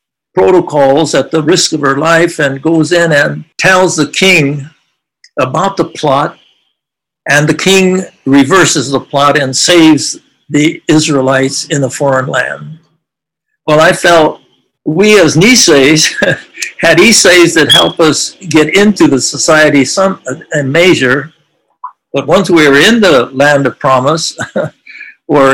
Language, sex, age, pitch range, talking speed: English, male, 60-79, 140-170 Hz, 140 wpm